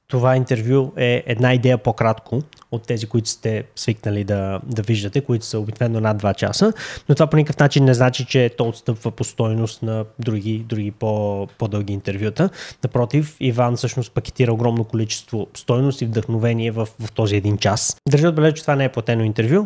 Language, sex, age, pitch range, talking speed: Bulgarian, male, 20-39, 115-140 Hz, 185 wpm